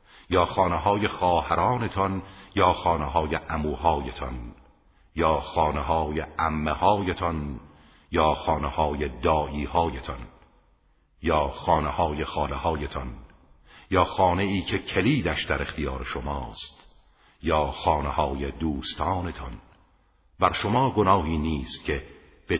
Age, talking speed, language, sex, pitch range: 50-69, 100 wpm, Persian, male, 70-85 Hz